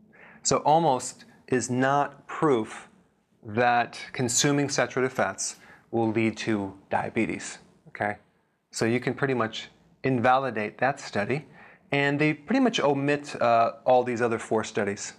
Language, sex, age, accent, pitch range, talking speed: English, male, 30-49, American, 115-135 Hz, 130 wpm